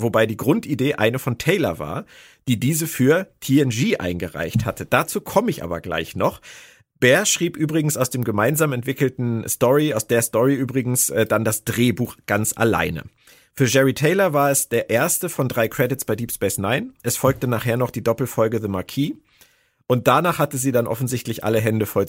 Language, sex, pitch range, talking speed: German, male, 110-140 Hz, 180 wpm